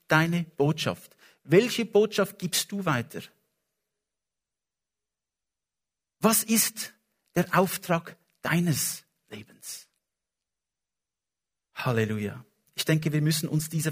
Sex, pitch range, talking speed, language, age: male, 125-165 Hz, 85 wpm, English, 50-69